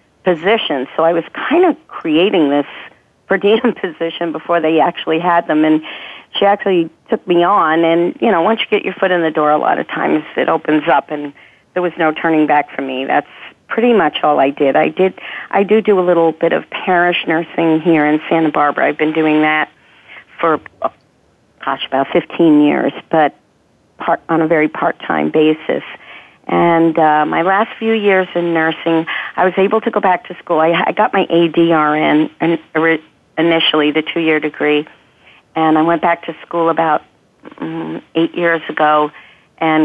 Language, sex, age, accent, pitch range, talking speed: English, female, 50-69, American, 155-175 Hz, 185 wpm